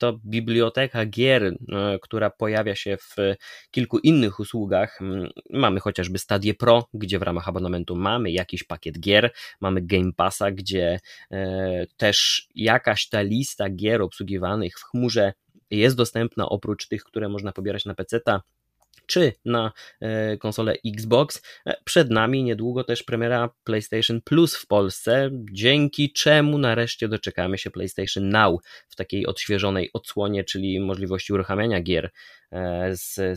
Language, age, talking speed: Polish, 20-39, 130 wpm